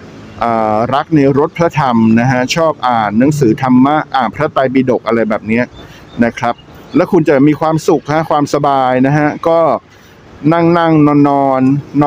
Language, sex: Thai, male